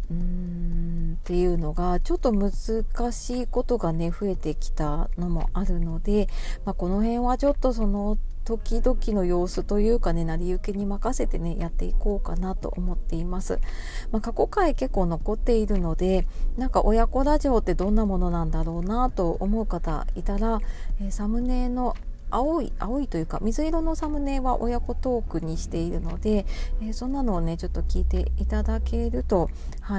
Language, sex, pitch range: Japanese, female, 165-220 Hz